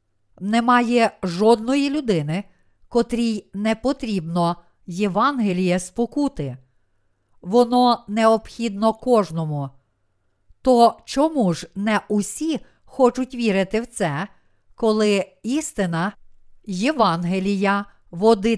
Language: Ukrainian